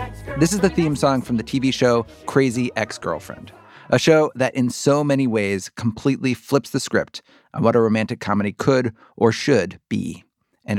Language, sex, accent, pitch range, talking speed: English, male, American, 110-140 Hz, 180 wpm